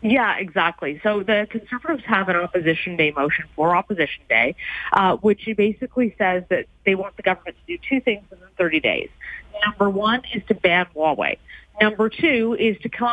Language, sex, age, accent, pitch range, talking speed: English, female, 30-49, American, 180-225 Hz, 185 wpm